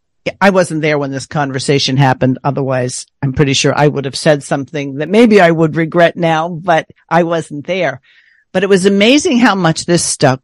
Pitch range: 150-185 Hz